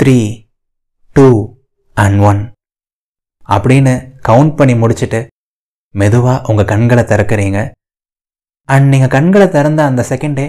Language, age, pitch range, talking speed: Tamil, 20-39, 110-140 Hz, 90 wpm